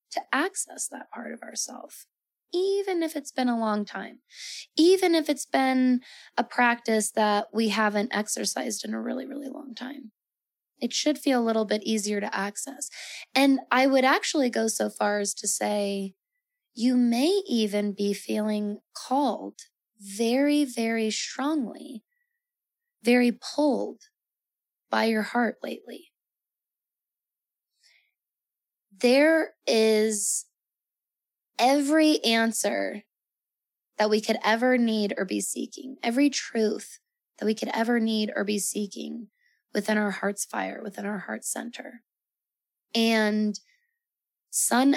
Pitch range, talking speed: 210-270 Hz, 125 wpm